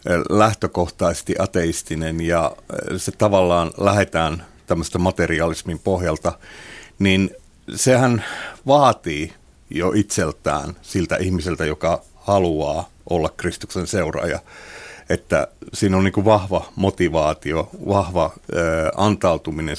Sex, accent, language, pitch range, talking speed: male, native, Finnish, 85-110 Hz, 85 wpm